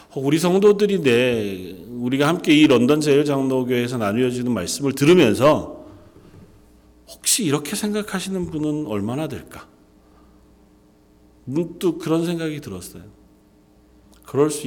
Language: Korean